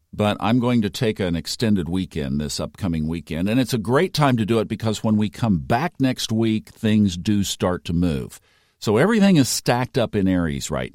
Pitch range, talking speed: 85-110 Hz, 215 wpm